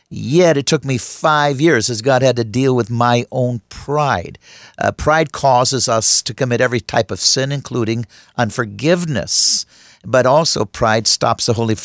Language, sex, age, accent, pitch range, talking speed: English, male, 50-69, American, 110-130 Hz, 165 wpm